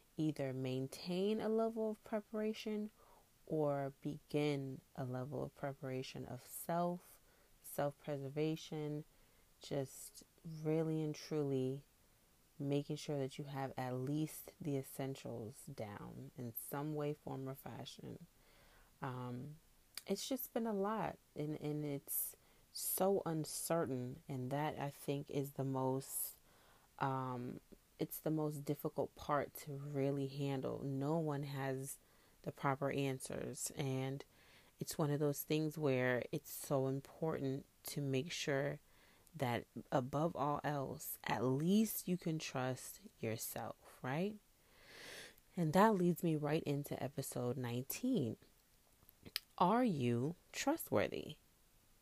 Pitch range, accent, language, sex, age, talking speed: 135-160 Hz, American, English, female, 30-49, 120 wpm